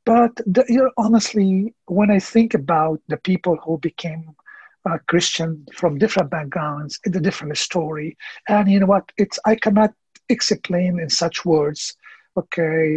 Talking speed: 155 wpm